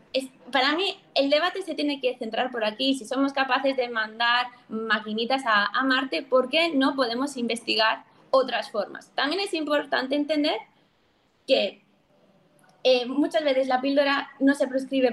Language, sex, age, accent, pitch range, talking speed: Spanish, female, 20-39, Spanish, 225-285 Hz, 155 wpm